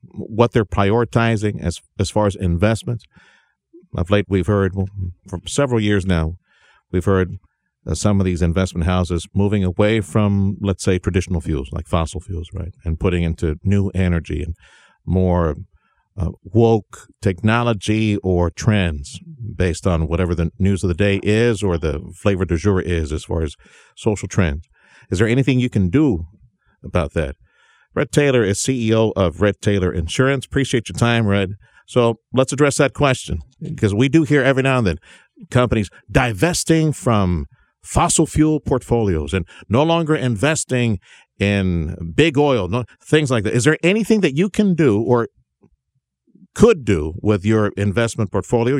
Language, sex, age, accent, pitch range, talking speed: English, male, 50-69, American, 90-120 Hz, 160 wpm